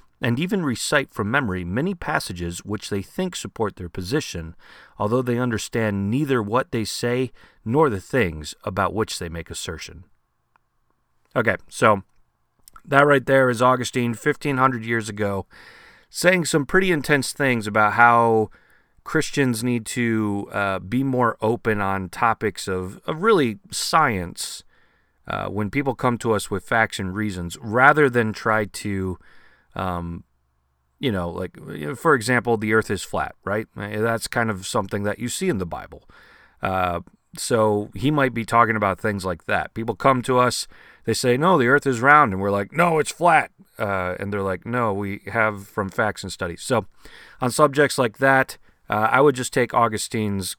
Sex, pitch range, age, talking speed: male, 95-125 Hz, 30-49, 170 wpm